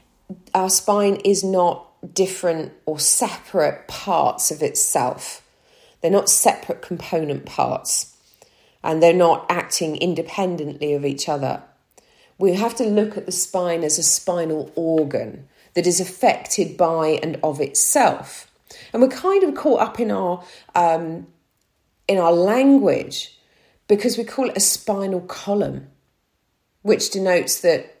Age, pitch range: 40-59, 150-190 Hz